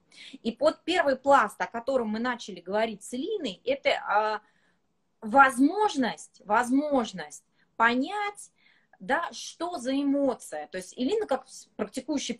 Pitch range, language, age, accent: 210-275 Hz, Russian, 20-39, native